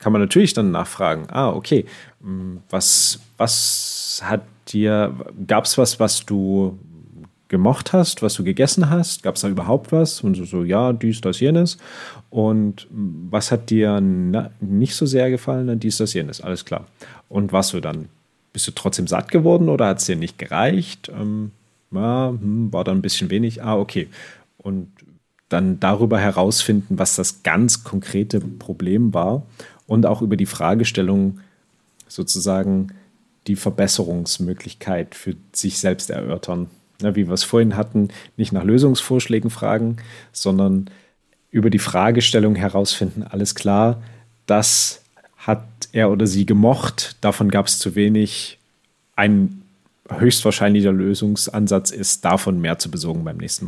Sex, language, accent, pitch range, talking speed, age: male, German, German, 95-115 Hz, 150 wpm, 40-59